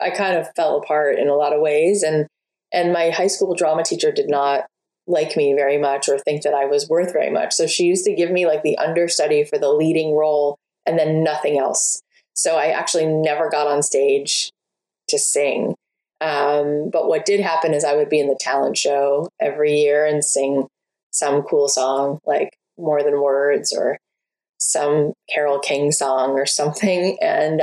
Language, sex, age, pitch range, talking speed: English, female, 20-39, 145-235 Hz, 195 wpm